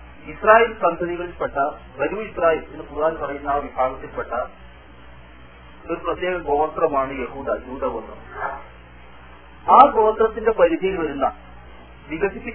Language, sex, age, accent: Malayalam, male, 40-59, native